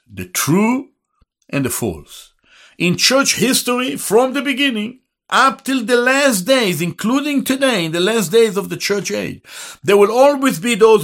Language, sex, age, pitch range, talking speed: English, male, 60-79, 155-260 Hz, 170 wpm